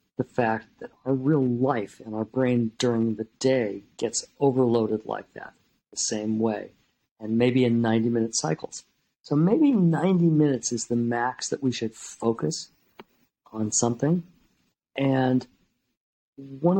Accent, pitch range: American, 110-135 Hz